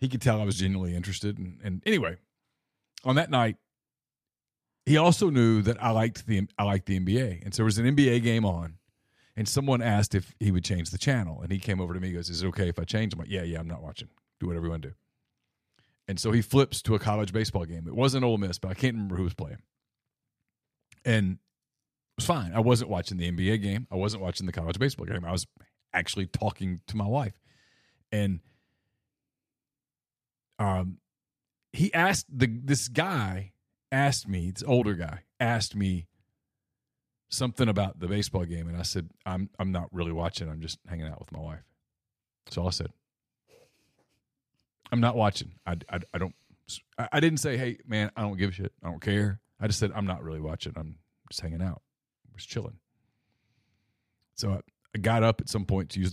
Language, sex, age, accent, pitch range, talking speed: English, male, 40-59, American, 90-120 Hz, 210 wpm